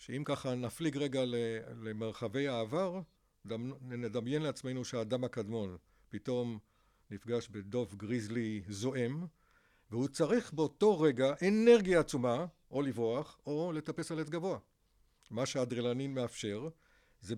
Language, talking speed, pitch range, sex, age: Hebrew, 110 wpm, 115-155 Hz, male, 60-79